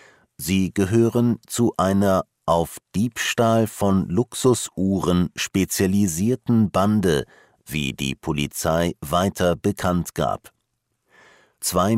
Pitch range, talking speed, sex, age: 85-110 Hz, 85 wpm, male, 50-69